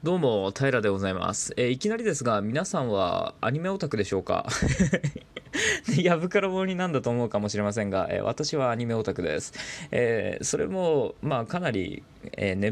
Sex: male